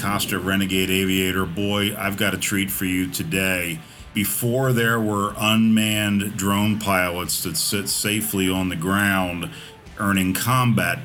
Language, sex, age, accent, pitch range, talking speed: English, male, 40-59, American, 95-120 Hz, 135 wpm